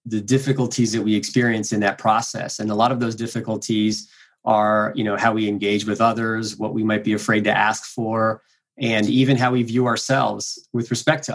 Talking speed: 205 wpm